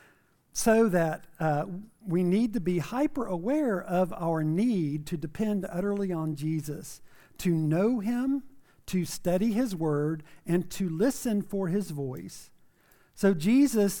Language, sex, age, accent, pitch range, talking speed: English, male, 50-69, American, 160-220 Hz, 135 wpm